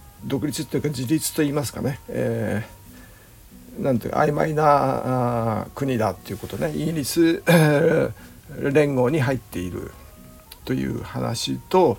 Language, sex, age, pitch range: Japanese, male, 60-79, 100-150 Hz